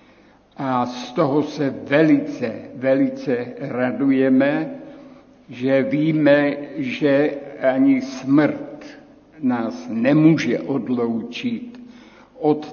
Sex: male